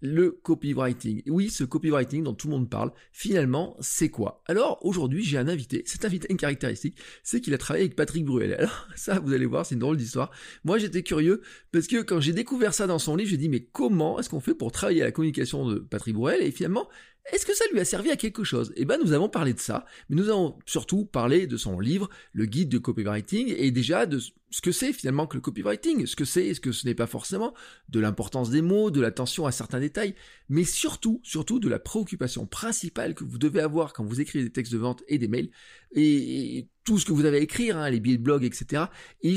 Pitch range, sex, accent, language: 130-185 Hz, male, French, French